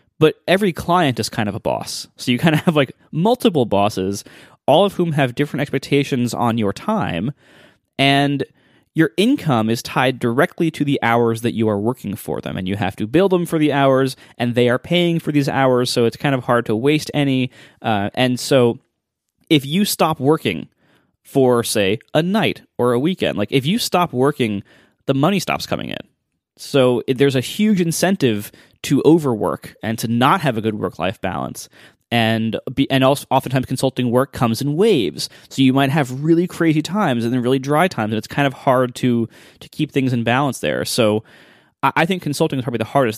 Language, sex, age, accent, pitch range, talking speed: English, male, 20-39, American, 115-150 Hz, 205 wpm